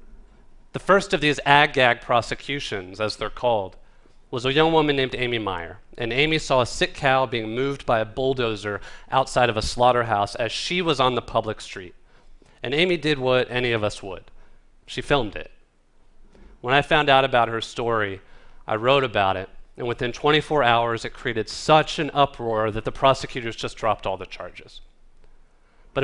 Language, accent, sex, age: Chinese, American, male, 30-49